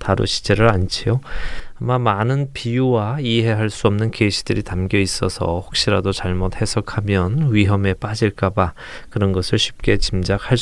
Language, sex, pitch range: Korean, male, 95-125 Hz